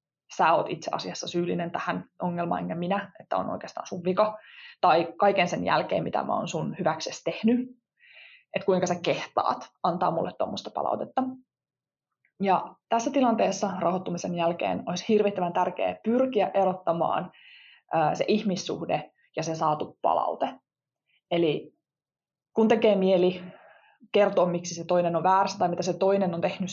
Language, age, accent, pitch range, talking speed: Finnish, 20-39, native, 175-210 Hz, 145 wpm